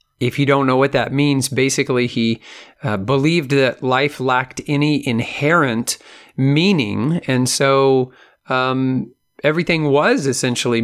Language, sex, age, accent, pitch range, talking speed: English, male, 40-59, American, 115-145 Hz, 125 wpm